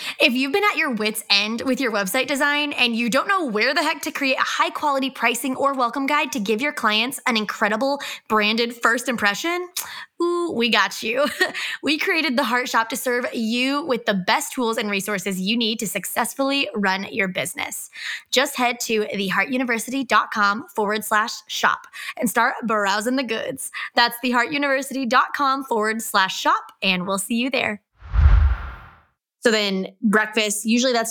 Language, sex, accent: English, female, American